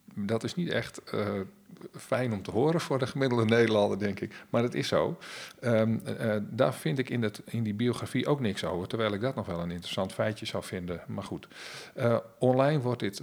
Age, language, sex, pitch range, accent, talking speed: 50-69, Dutch, male, 100-115 Hz, Dutch, 220 wpm